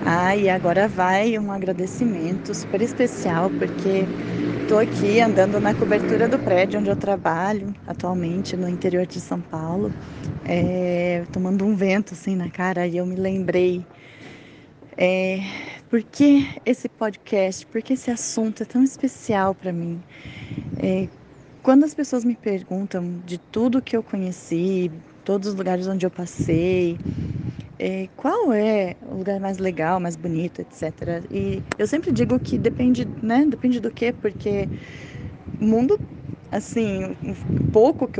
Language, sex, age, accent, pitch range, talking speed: Portuguese, female, 20-39, Brazilian, 175-210 Hz, 145 wpm